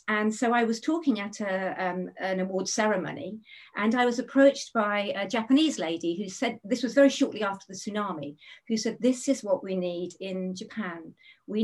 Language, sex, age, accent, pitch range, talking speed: English, female, 50-69, British, 185-235 Hz, 190 wpm